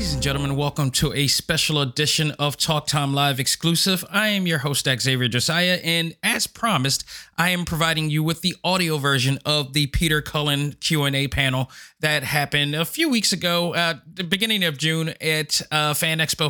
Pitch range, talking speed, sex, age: 135-160 Hz, 195 wpm, male, 30-49